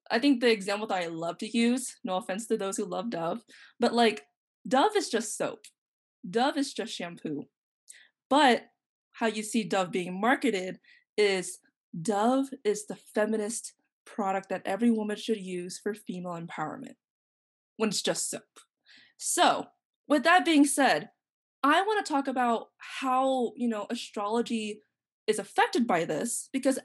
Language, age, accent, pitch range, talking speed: English, 20-39, American, 205-265 Hz, 155 wpm